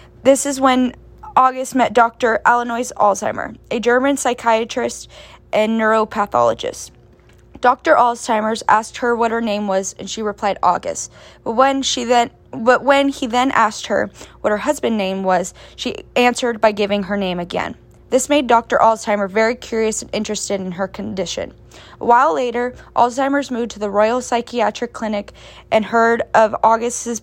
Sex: female